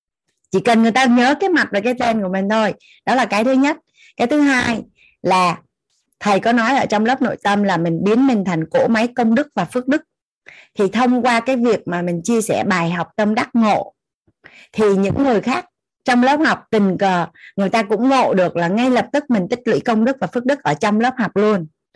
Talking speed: 240 wpm